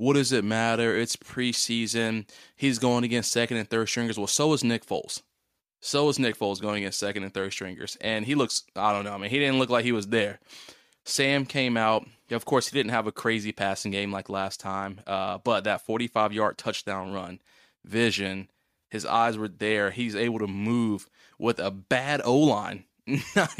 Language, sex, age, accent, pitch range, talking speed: English, male, 20-39, American, 100-120 Hz, 200 wpm